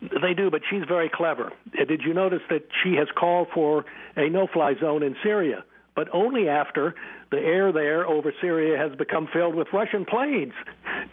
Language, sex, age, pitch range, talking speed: English, male, 60-79, 150-180 Hz, 180 wpm